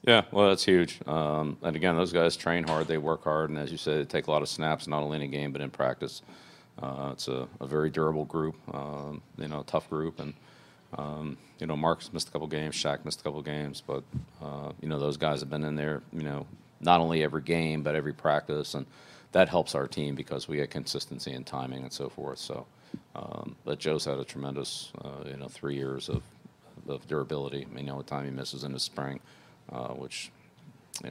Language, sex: English, male